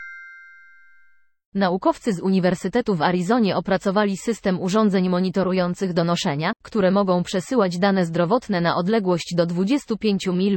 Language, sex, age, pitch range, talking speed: Polish, female, 20-39, 175-210 Hz, 115 wpm